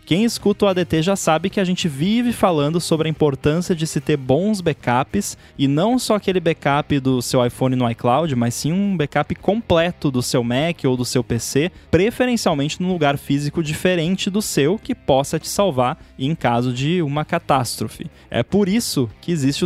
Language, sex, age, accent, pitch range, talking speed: Portuguese, male, 10-29, Brazilian, 130-180 Hz, 190 wpm